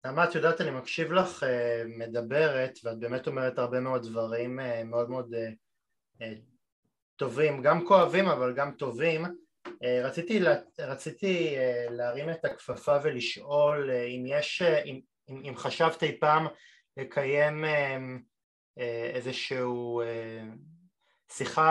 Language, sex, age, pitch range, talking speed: Hebrew, male, 20-39, 125-155 Hz, 135 wpm